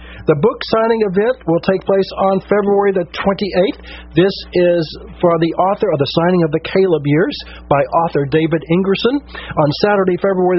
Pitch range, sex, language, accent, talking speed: 140-180 Hz, male, English, American, 170 wpm